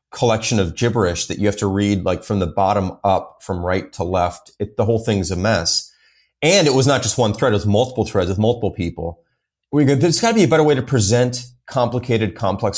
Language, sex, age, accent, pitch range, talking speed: English, male, 30-49, American, 100-125 Hz, 230 wpm